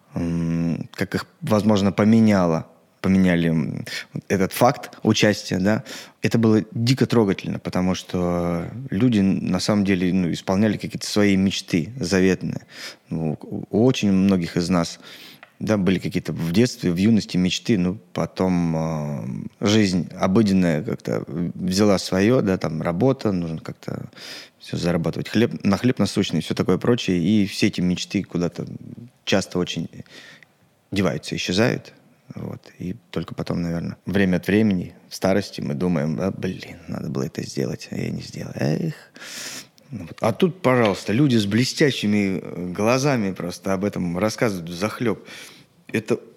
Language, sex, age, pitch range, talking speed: Russian, male, 20-39, 90-110 Hz, 130 wpm